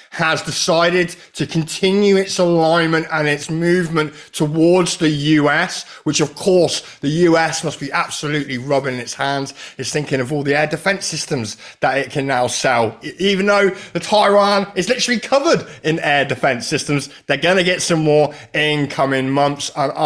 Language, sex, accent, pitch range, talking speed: English, male, British, 130-170 Hz, 170 wpm